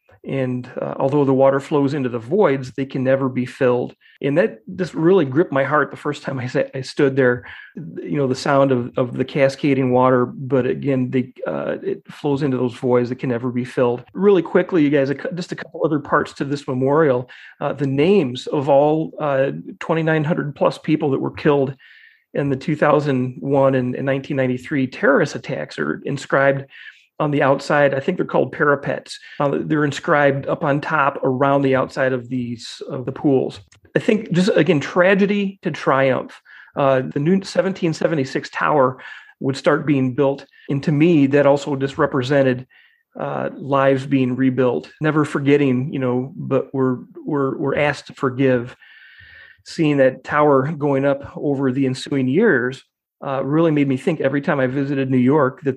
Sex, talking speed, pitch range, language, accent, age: male, 180 wpm, 130-150 Hz, English, American, 40-59